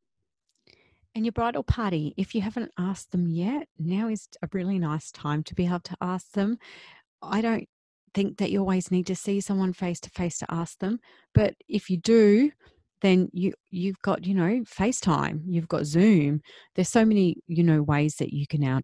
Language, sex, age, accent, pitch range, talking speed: English, female, 40-59, Australian, 150-200 Hz, 200 wpm